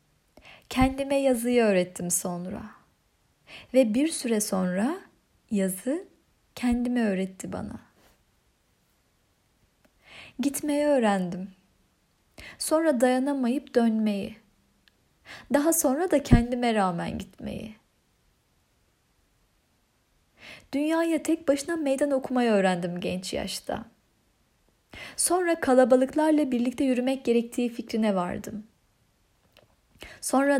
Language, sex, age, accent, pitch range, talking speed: Turkish, female, 30-49, native, 210-275 Hz, 75 wpm